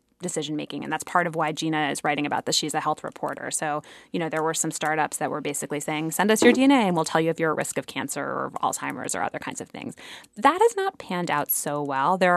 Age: 20-39